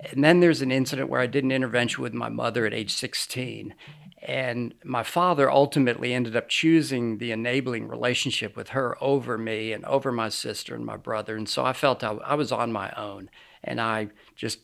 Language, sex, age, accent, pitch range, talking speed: English, male, 50-69, American, 115-150 Hz, 205 wpm